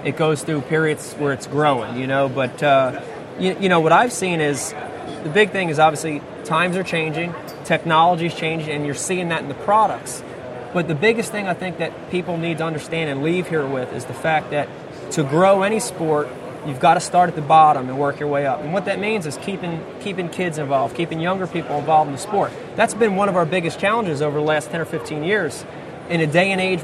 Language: English